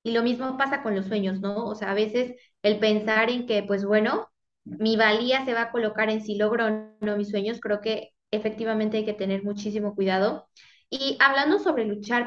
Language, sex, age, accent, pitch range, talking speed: Spanish, female, 20-39, Mexican, 210-255 Hz, 210 wpm